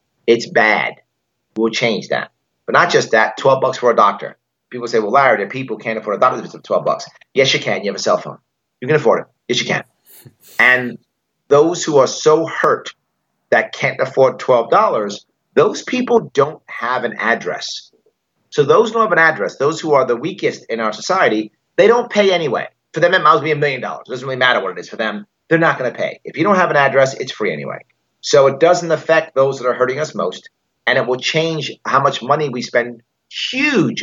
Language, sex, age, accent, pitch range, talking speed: English, male, 30-49, American, 120-165 Hz, 225 wpm